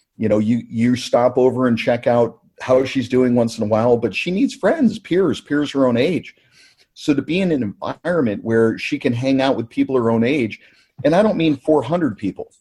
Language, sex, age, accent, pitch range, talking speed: English, male, 50-69, American, 115-145 Hz, 225 wpm